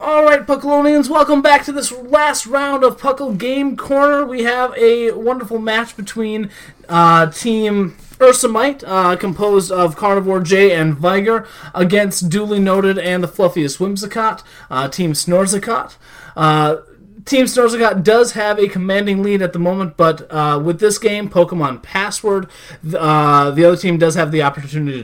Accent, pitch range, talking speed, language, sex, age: American, 165-230 Hz, 155 wpm, English, male, 30-49